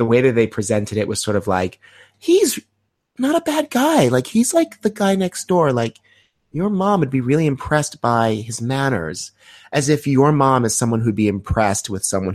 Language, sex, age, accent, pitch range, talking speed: English, male, 30-49, American, 95-120 Hz, 210 wpm